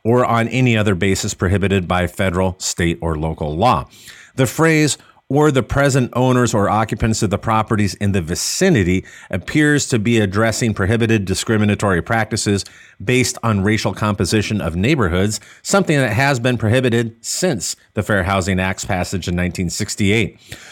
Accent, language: American, English